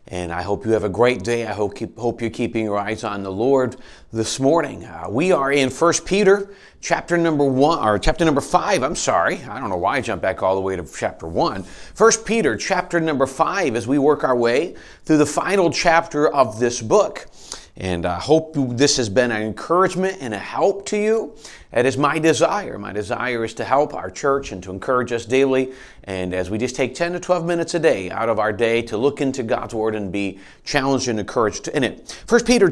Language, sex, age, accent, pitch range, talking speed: English, male, 40-59, American, 115-165 Hz, 225 wpm